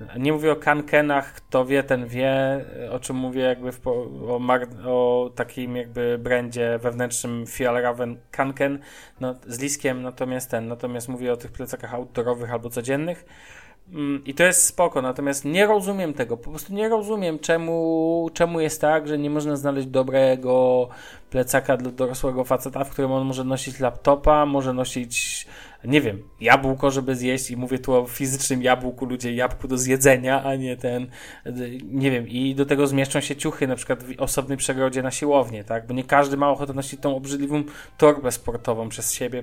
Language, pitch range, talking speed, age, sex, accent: Polish, 125-140 Hz, 175 wpm, 20-39, male, native